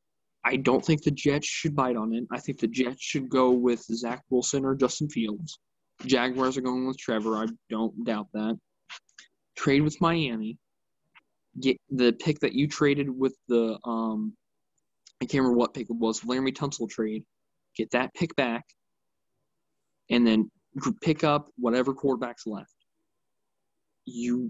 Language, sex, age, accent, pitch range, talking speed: English, male, 20-39, American, 115-135 Hz, 160 wpm